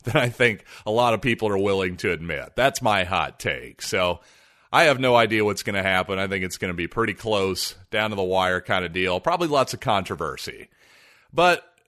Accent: American